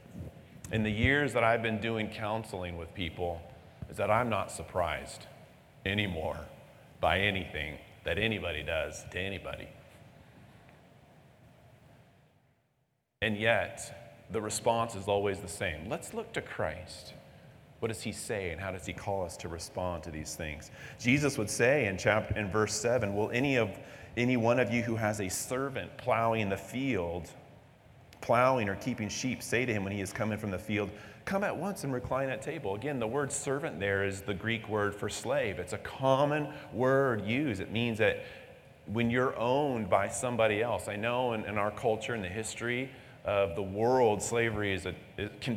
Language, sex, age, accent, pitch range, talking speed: English, male, 40-59, American, 100-130 Hz, 180 wpm